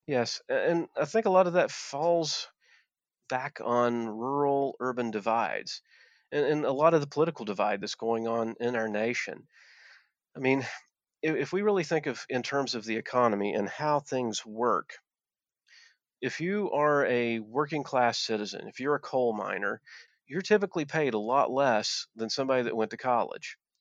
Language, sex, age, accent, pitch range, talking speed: English, male, 40-59, American, 110-135 Hz, 165 wpm